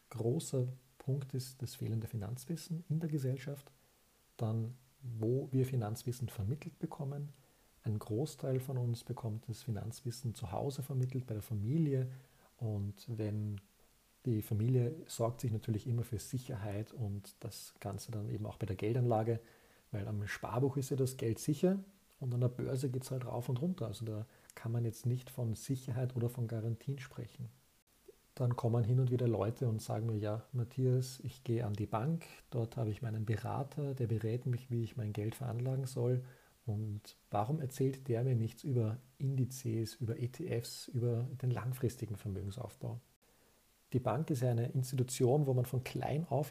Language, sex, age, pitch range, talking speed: German, male, 40-59, 110-130 Hz, 170 wpm